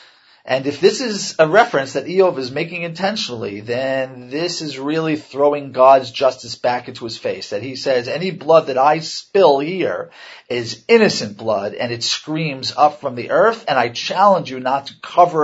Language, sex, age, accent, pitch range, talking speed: English, male, 40-59, American, 125-155 Hz, 185 wpm